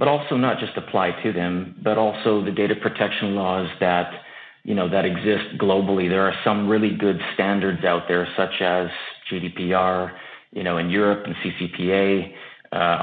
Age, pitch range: 40-59, 90-105 Hz